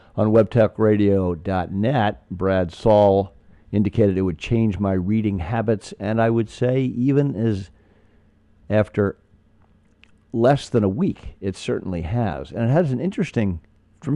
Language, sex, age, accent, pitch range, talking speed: English, male, 50-69, American, 95-110 Hz, 130 wpm